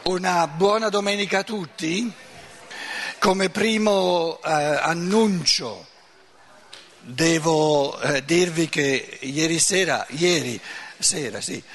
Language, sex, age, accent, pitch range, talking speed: Italian, male, 60-79, native, 155-205 Hz, 90 wpm